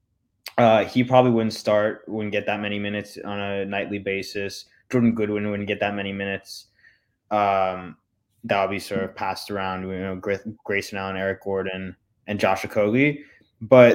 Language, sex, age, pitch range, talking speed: English, male, 20-39, 100-120 Hz, 165 wpm